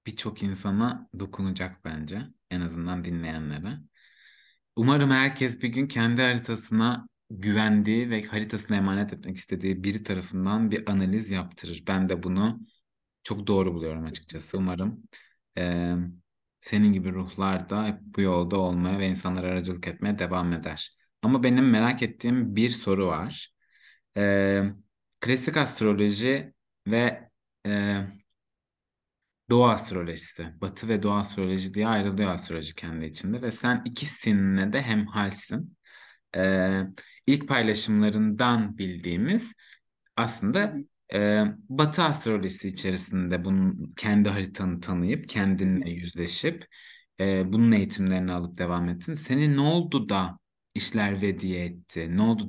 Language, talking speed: Turkish, 120 wpm